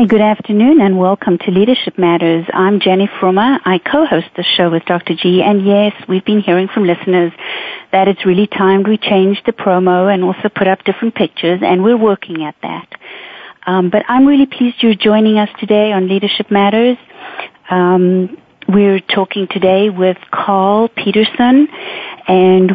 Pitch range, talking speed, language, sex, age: 175-220 Hz, 170 wpm, English, female, 40-59